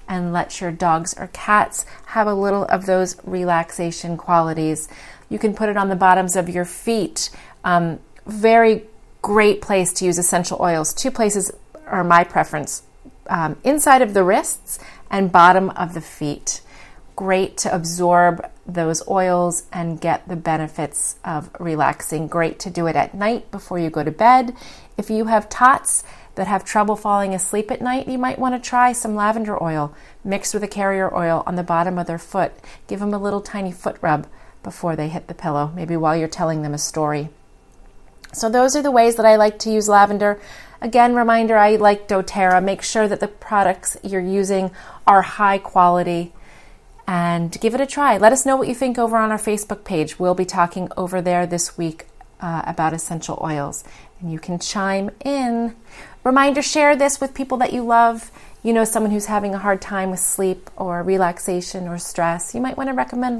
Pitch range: 175-220 Hz